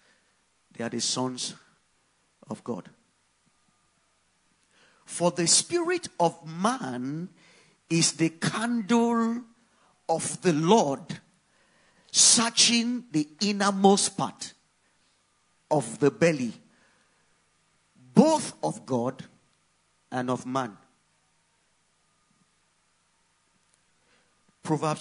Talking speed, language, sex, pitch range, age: 75 wpm, English, male, 155-225 Hz, 50-69